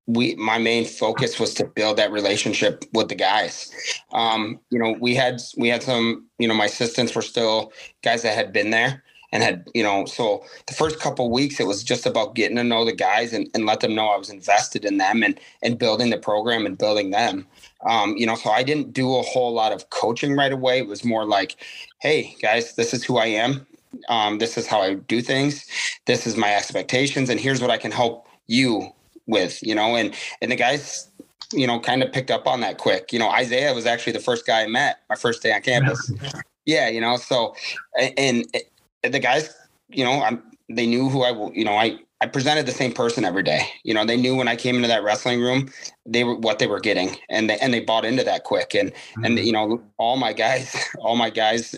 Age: 30-49